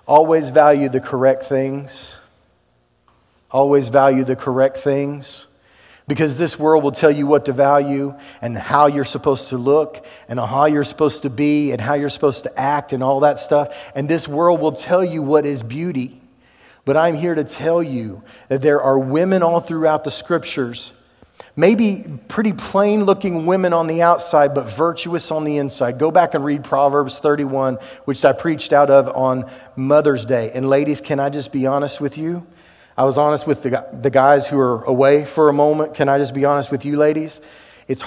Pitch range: 130-150 Hz